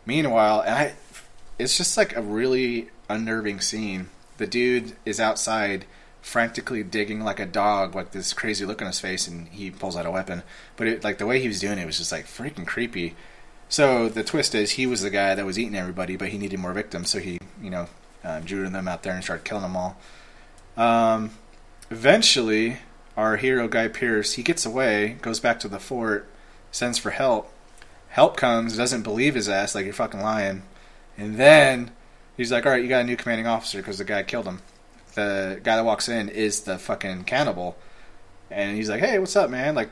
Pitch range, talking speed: 95-120 Hz, 205 wpm